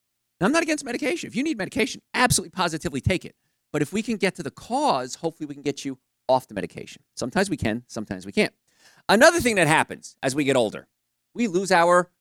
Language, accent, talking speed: English, American, 220 wpm